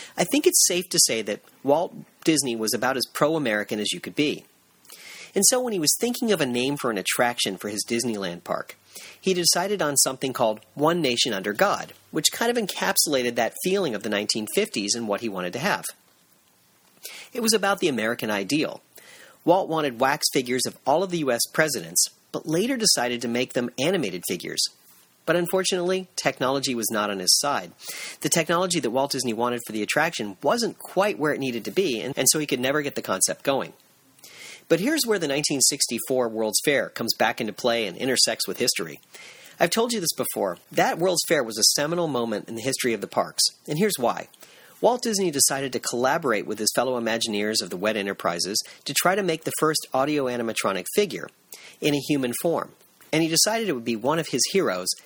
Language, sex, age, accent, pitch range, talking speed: English, male, 40-59, American, 115-175 Hz, 205 wpm